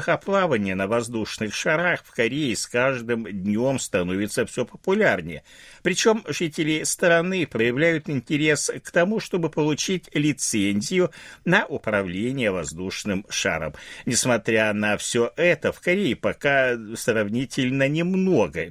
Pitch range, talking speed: 100-160 Hz, 110 wpm